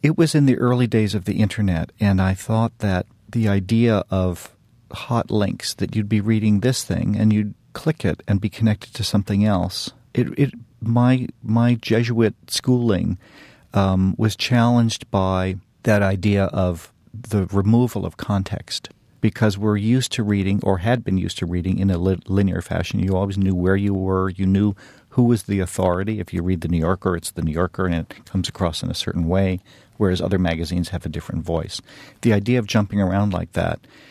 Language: English